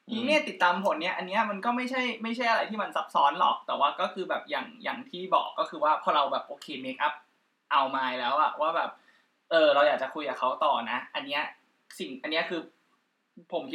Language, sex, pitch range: Thai, male, 155-195 Hz